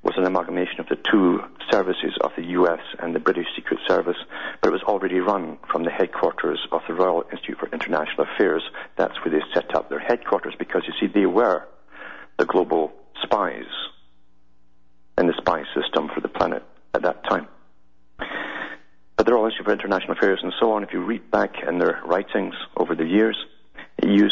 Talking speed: 190 wpm